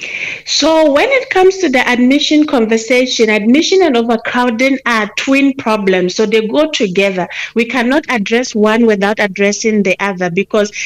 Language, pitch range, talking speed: English, 215-255 Hz, 150 wpm